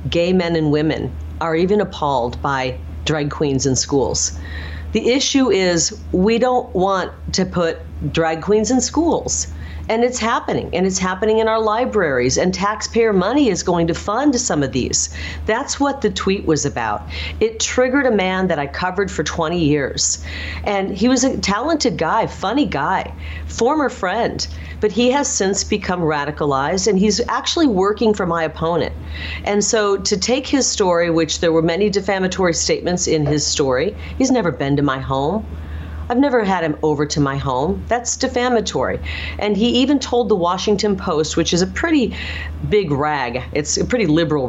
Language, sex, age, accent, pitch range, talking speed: English, female, 40-59, American, 145-215 Hz, 175 wpm